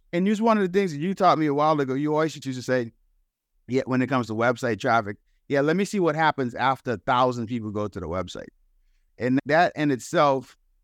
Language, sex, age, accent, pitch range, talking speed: English, male, 50-69, American, 125-160 Hz, 240 wpm